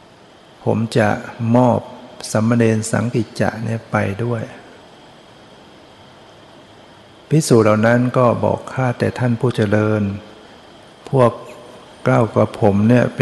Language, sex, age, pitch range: Thai, male, 60-79, 105-120 Hz